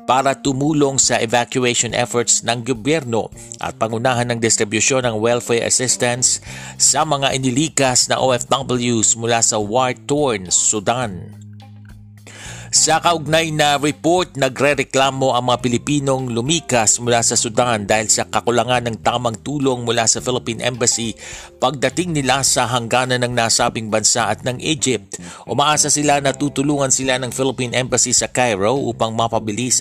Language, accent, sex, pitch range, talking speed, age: Filipino, native, male, 115-135 Hz, 135 wpm, 50-69